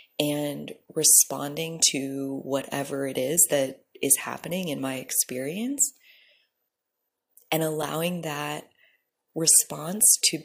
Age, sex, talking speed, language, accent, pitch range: 20-39, female, 100 wpm, English, American, 140-180 Hz